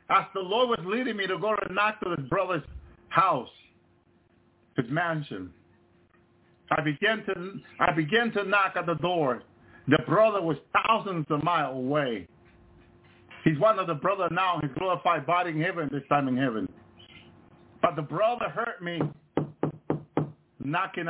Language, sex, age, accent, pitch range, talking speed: English, male, 50-69, American, 130-195 Hz, 155 wpm